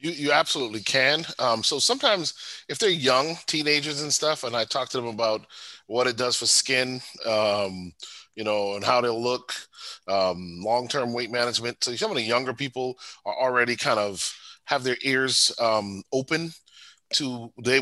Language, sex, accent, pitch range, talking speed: English, male, American, 110-130 Hz, 175 wpm